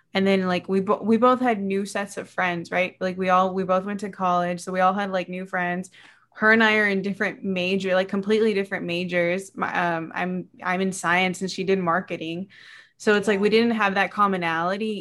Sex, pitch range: female, 185-215 Hz